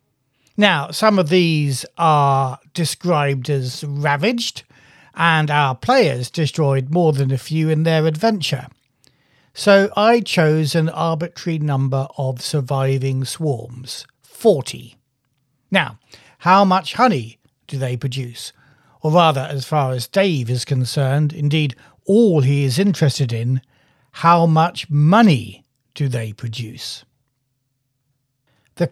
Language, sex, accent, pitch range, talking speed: English, male, British, 135-185 Hz, 120 wpm